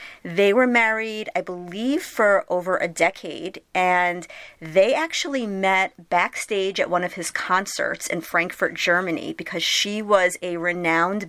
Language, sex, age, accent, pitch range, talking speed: English, female, 30-49, American, 175-220 Hz, 145 wpm